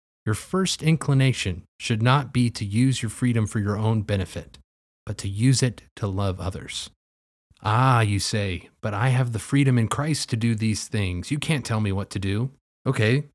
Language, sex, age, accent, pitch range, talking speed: English, male, 30-49, American, 100-135 Hz, 195 wpm